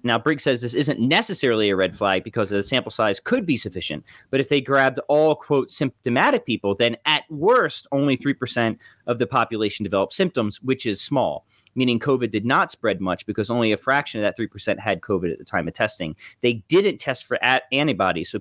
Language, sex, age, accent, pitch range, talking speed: English, male, 30-49, American, 100-135 Hz, 205 wpm